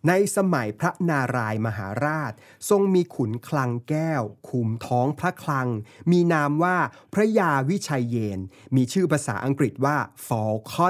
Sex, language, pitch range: male, Thai, 120-155 Hz